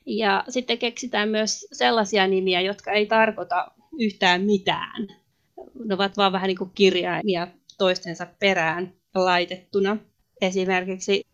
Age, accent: 30-49, native